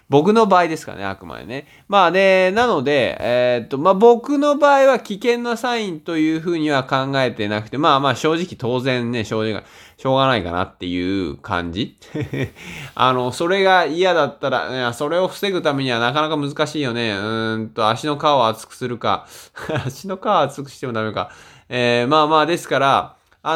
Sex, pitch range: male, 125-200 Hz